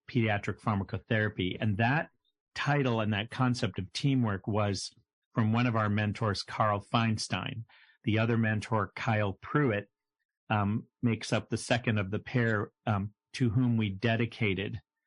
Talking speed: 145 wpm